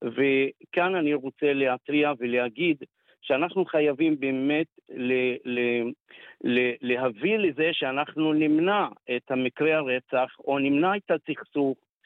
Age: 50-69